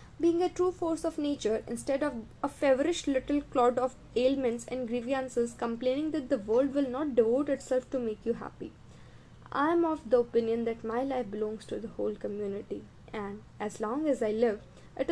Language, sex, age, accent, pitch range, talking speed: Hindi, female, 20-39, native, 225-280 Hz, 190 wpm